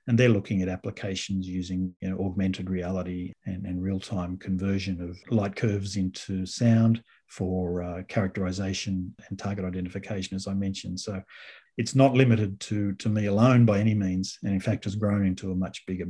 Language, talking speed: English, 180 wpm